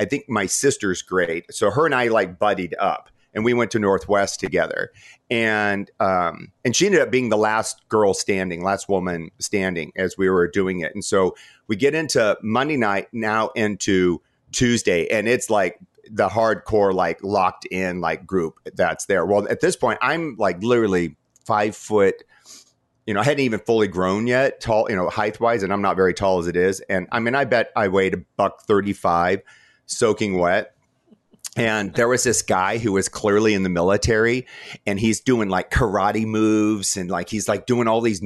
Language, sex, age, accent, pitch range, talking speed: English, male, 40-59, American, 95-115 Hz, 200 wpm